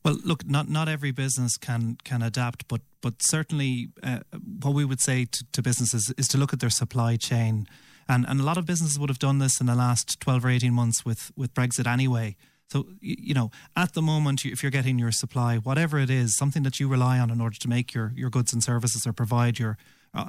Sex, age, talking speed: male, 30-49, 240 wpm